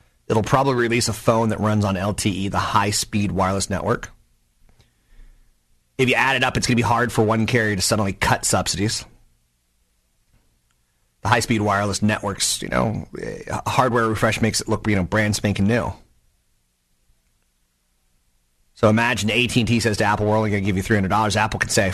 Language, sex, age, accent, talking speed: English, male, 30-49, American, 170 wpm